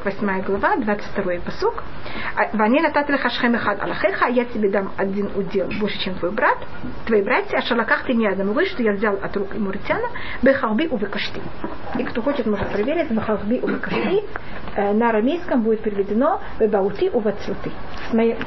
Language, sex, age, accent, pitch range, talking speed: Russian, female, 40-59, native, 210-265 Hz, 140 wpm